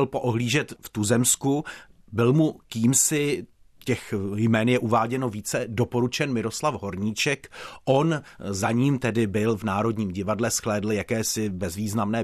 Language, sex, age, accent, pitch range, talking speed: Czech, male, 40-59, native, 110-125 Hz, 125 wpm